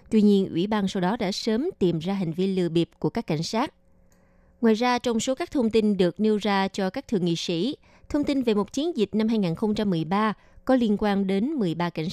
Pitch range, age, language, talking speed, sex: 190-230 Hz, 20-39, Vietnamese, 235 wpm, female